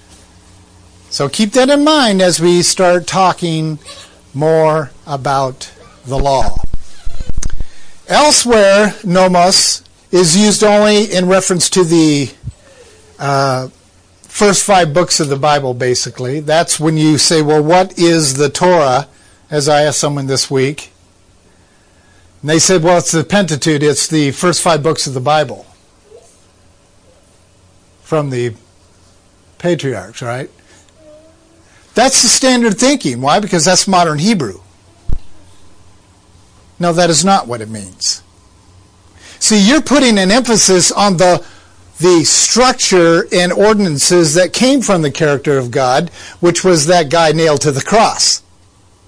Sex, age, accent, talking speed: male, 50-69, American, 130 wpm